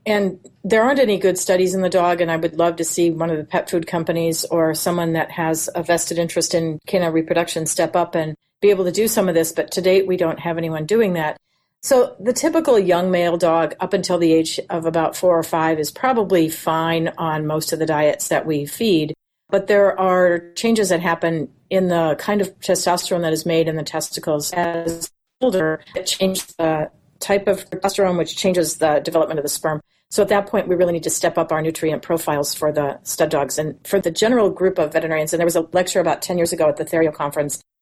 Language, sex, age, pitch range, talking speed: English, female, 40-59, 160-190 Hz, 230 wpm